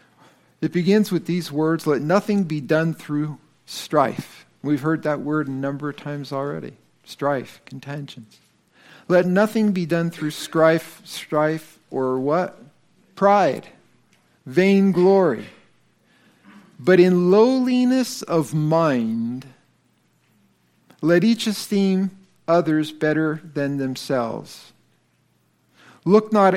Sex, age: male, 50-69